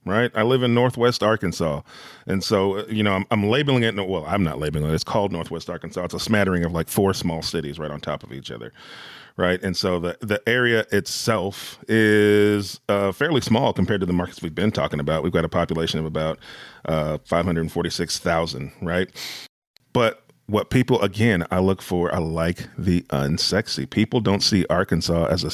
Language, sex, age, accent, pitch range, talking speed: English, male, 40-59, American, 85-105 Hz, 195 wpm